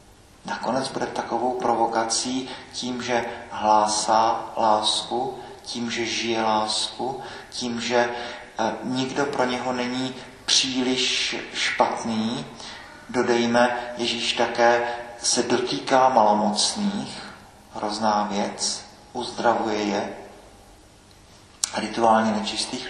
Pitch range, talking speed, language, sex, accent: 110-130 Hz, 85 wpm, Czech, male, native